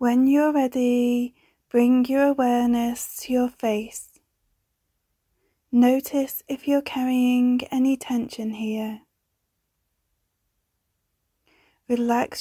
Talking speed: 80 wpm